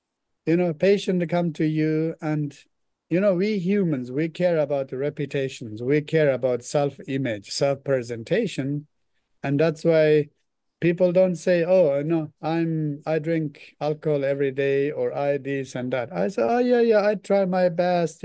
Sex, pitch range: male, 135-170 Hz